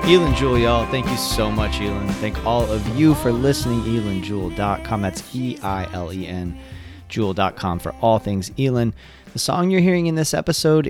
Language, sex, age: English, male, 30-49